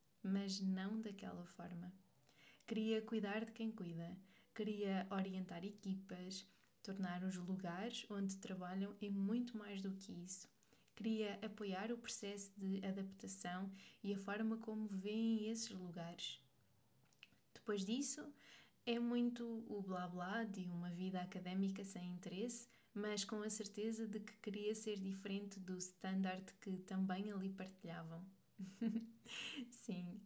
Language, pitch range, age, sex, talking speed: Portuguese, 190-220 Hz, 20-39, female, 130 wpm